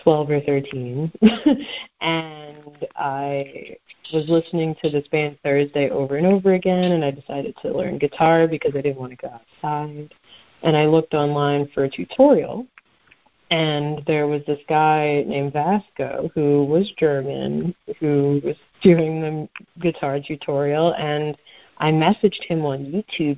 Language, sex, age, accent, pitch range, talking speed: English, female, 30-49, American, 145-180 Hz, 145 wpm